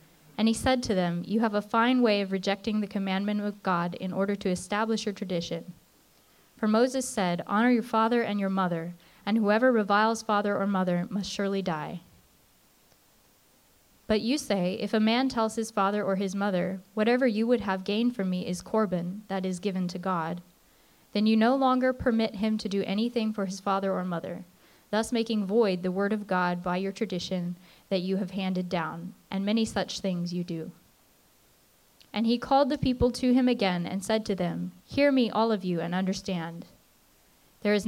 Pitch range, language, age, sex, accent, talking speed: 185-230 Hz, English, 20-39, female, American, 195 wpm